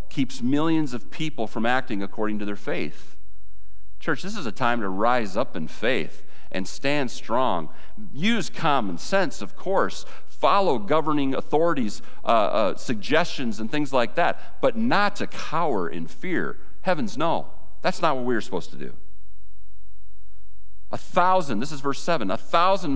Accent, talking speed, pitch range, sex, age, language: American, 160 wpm, 100-165 Hz, male, 40-59, English